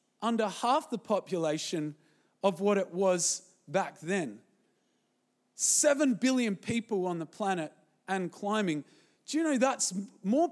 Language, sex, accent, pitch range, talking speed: English, male, Australian, 195-240 Hz, 130 wpm